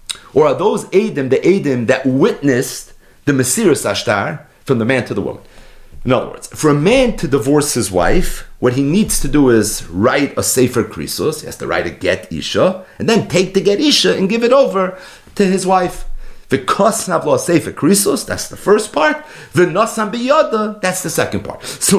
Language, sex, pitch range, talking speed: English, male, 135-220 Hz, 190 wpm